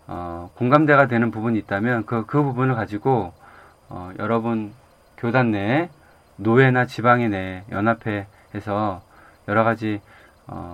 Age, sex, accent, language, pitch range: 20-39, male, native, Korean, 95-130 Hz